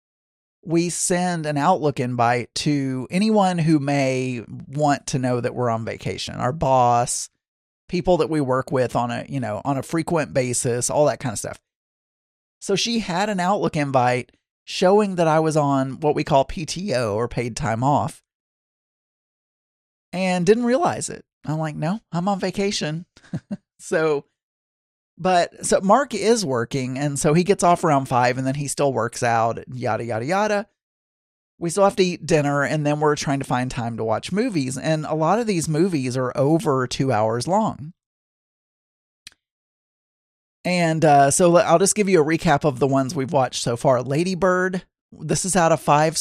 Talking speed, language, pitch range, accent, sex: 180 wpm, English, 130-175 Hz, American, male